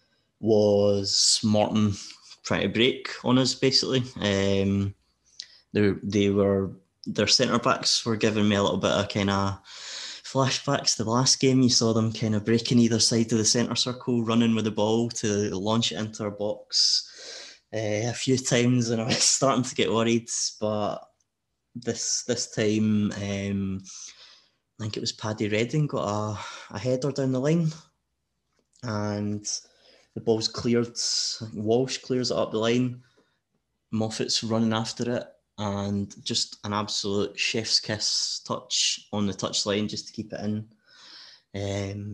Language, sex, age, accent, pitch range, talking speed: English, male, 20-39, British, 100-120 Hz, 155 wpm